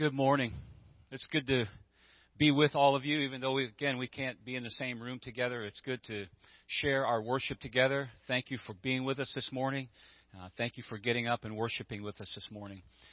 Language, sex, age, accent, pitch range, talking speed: English, male, 40-59, American, 105-125 Hz, 220 wpm